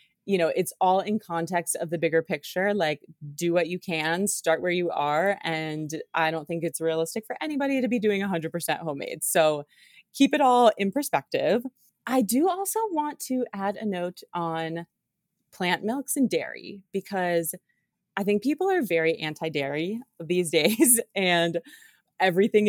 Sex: female